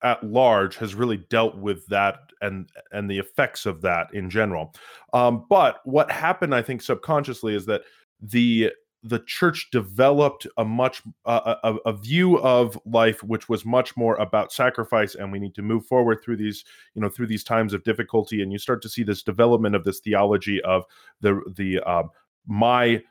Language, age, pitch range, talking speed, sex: English, 20-39, 100-130 Hz, 190 wpm, male